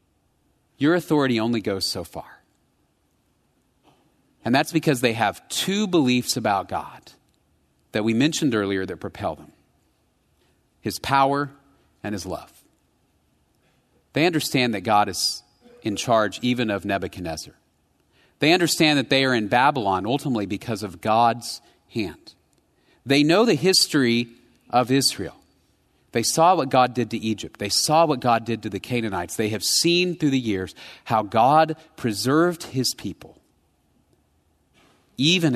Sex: male